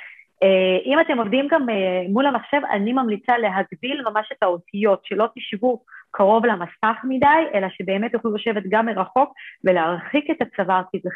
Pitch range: 190-255 Hz